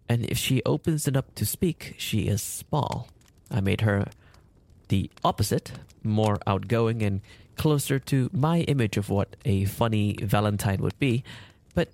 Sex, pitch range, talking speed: male, 100-130 Hz, 155 wpm